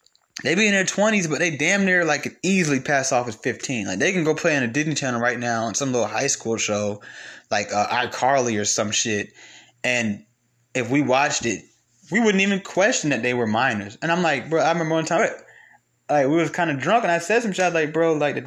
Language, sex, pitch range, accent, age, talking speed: English, male, 115-185 Hz, American, 20-39, 240 wpm